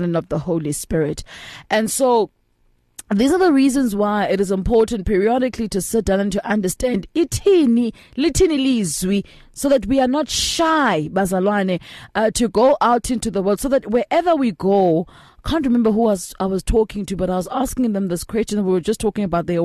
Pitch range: 185-255 Hz